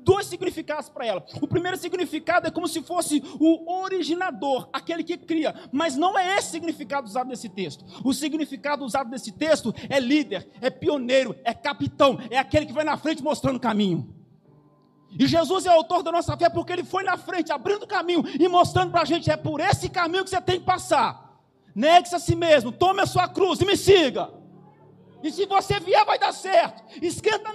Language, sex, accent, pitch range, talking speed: Portuguese, male, Brazilian, 275-375 Hz, 200 wpm